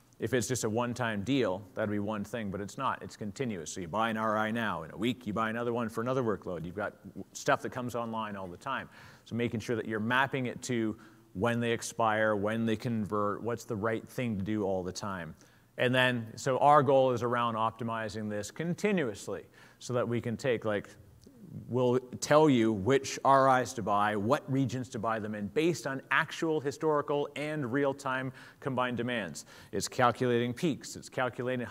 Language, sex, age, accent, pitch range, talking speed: English, male, 40-59, American, 110-140 Hz, 200 wpm